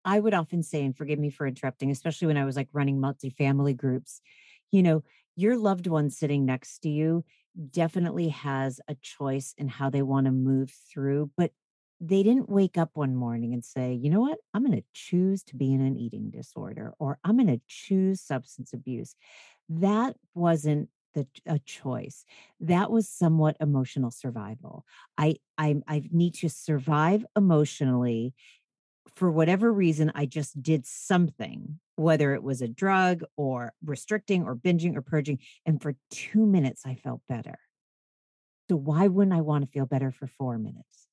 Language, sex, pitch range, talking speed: English, female, 135-190 Hz, 175 wpm